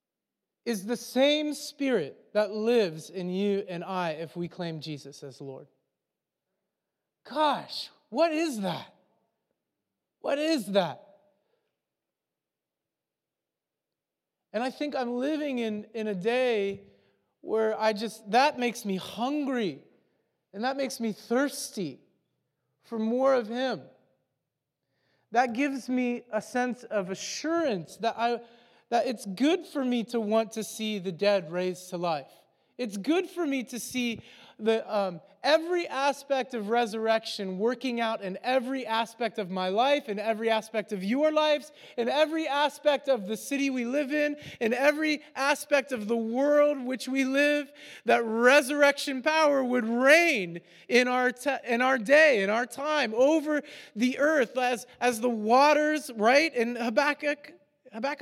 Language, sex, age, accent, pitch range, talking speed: English, male, 40-59, American, 210-285 Hz, 145 wpm